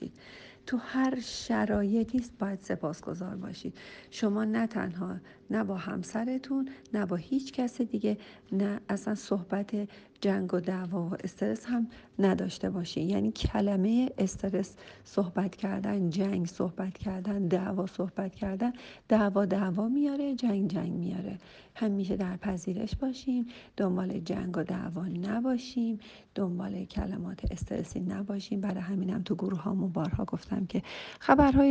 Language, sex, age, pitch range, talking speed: Persian, female, 50-69, 185-210 Hz, 125 wpm